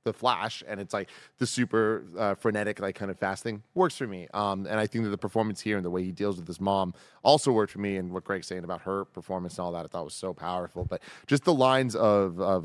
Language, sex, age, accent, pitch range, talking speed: English, male, 20-39, American, 95-120 Hz, 275 wpm